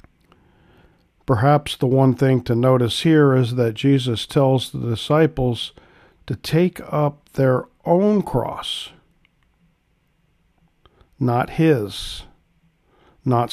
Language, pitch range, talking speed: English, 120-165 Hz, 100 wpm